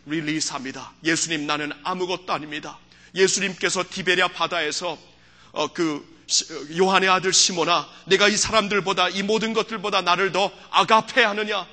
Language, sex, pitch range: Korean, male, 135-190 Hz